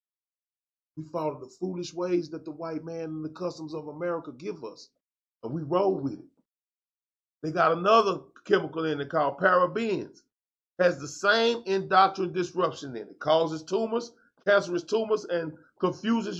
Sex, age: male, 40-59